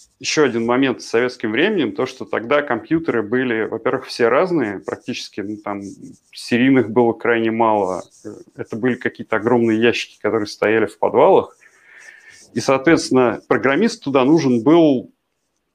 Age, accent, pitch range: 30-49, native, 115-145 Hz